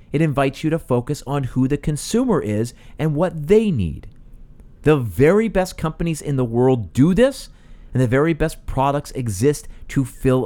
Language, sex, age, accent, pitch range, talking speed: English, male, 40-59, American, 120-155 Hz, 180 wpm